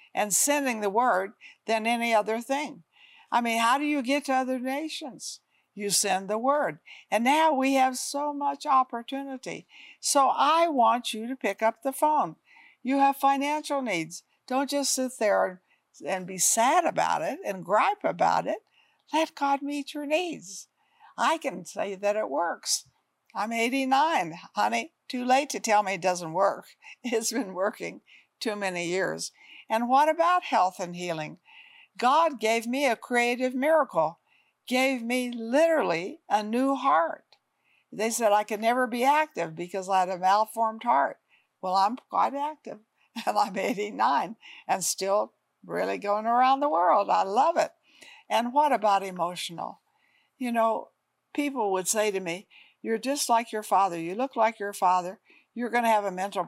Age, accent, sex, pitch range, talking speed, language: 60-79, American, female, 205-280 Hz, 165 wpm, English